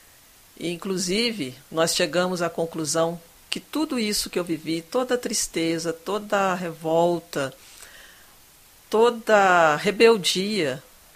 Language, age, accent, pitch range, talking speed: Portuguese, 50-69, Brazilian, 165-200 Hz, 110 wpm